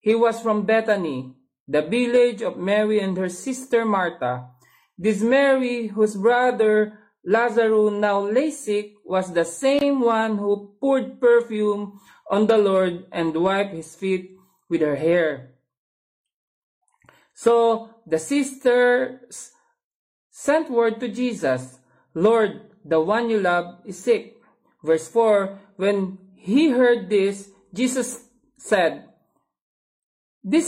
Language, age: English, 40-59